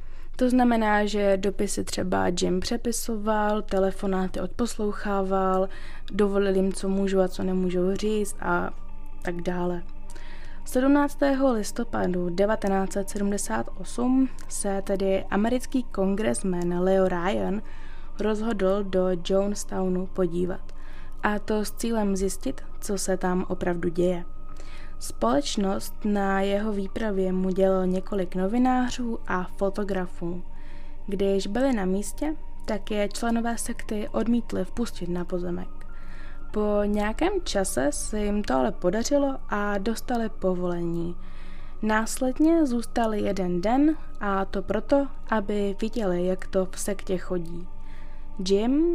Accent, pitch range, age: native, 185-230 Hz, 20-39